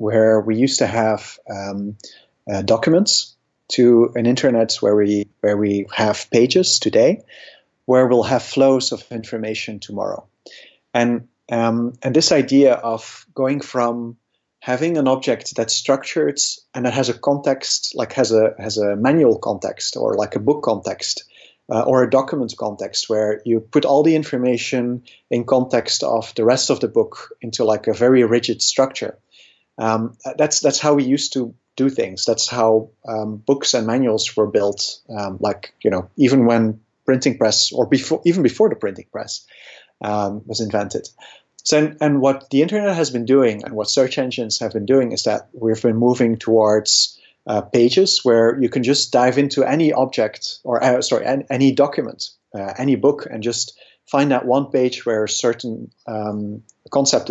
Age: 30-49